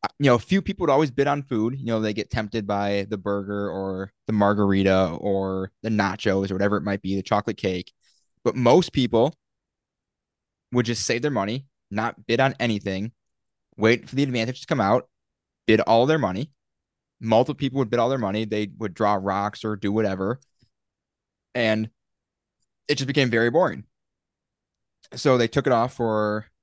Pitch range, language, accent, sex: 100-120 Hz, English, American, male